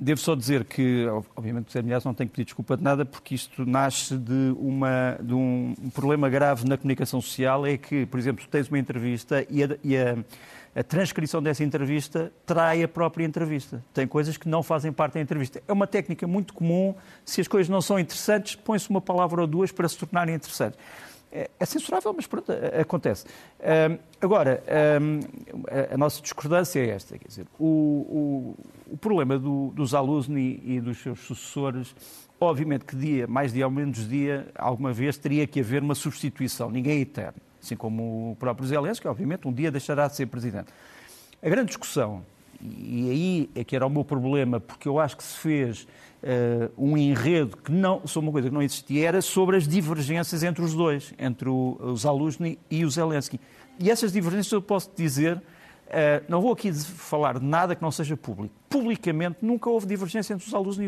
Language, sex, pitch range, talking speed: Portuguese, male, 130-170 Hz, 195 wpm